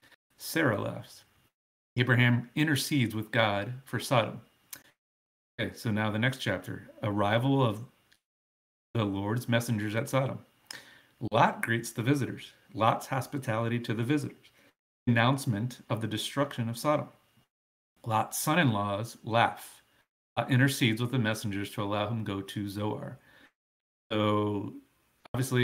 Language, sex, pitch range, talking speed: English, male, 105-125 Hz, 120 wpm